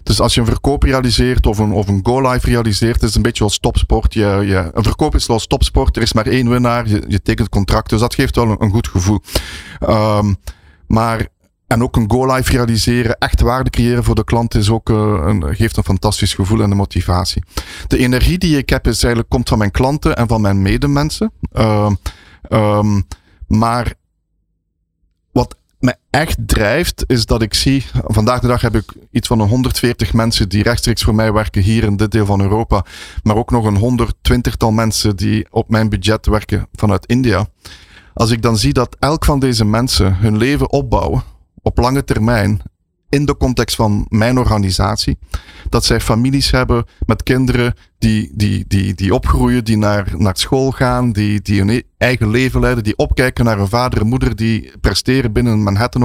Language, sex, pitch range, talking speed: English, male, 105-125 Hz, 190 wpm